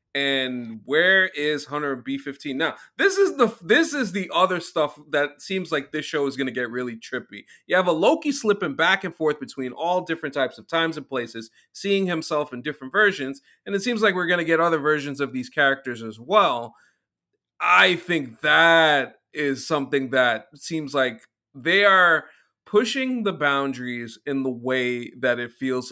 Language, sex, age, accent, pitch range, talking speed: English, male, 30-49, American, 125-165 Hz, 180 wpm